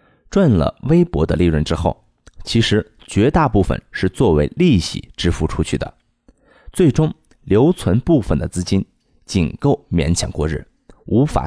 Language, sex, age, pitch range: Chinese, male, 20-39, 85-135 Hz